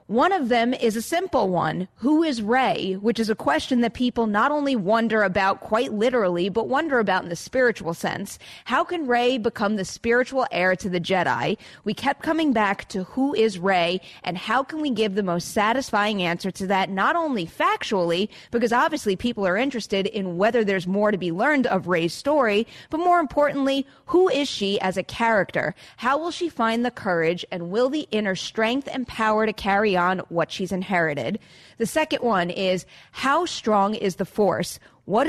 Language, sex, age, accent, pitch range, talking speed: English, female, 30-49, American, 195-265 Hz, 195 wpm